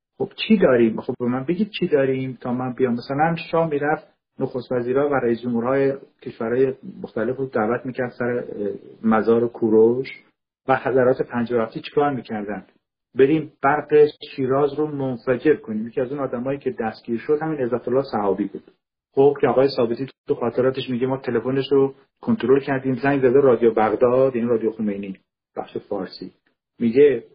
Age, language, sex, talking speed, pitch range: 50-69, Persian, male, 160 wpm, 120-150 Hz